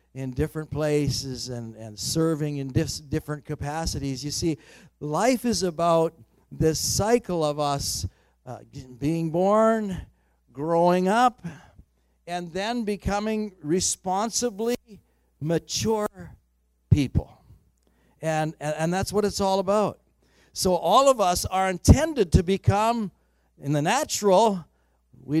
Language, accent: English, American